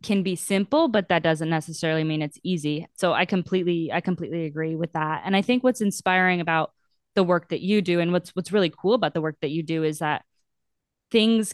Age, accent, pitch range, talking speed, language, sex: 20-39, American, 160-190 Hz, 225 wpm, English, female